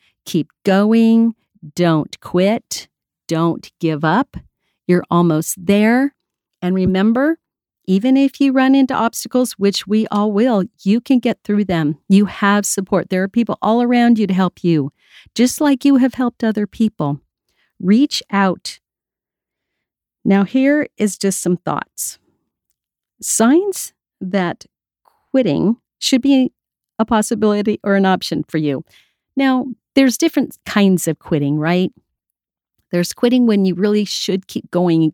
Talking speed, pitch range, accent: 140 wpm, 165-230 Hz, American